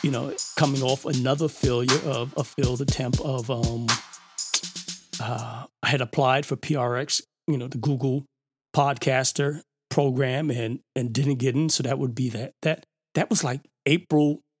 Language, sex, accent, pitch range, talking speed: English, male, American, 130-165 Hz, 160 wpm